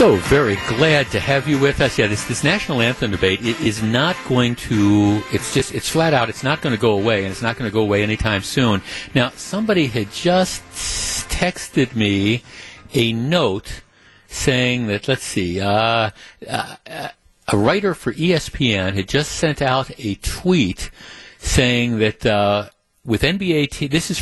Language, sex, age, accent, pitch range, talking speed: English, male, 60-79, American, 105-145 Hz, 175 wpm